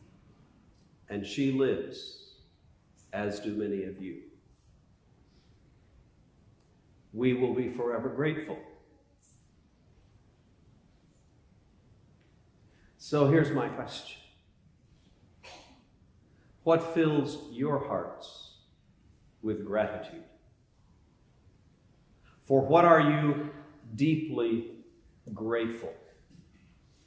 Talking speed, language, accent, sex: 65 wpm, English, American, male